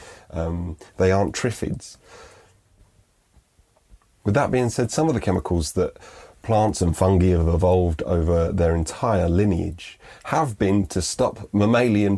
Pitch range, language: 90-105 Hz, English